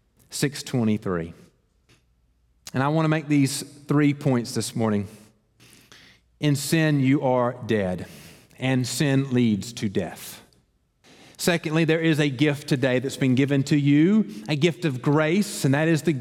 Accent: American